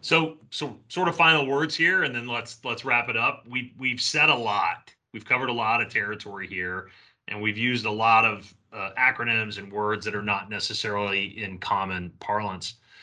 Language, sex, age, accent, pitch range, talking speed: English, male, 30-49, American, 100-120 Hz, 200 wpm